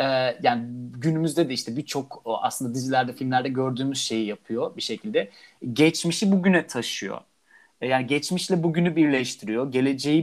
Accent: native